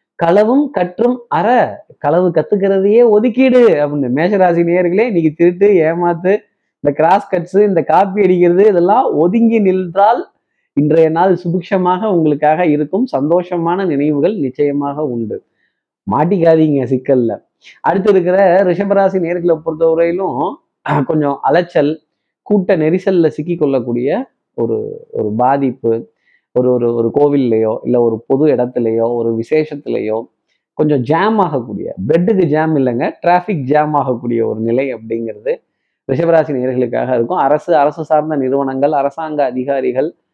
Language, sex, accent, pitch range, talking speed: Tamil, male, native, 135-180 Hz, 115 wpm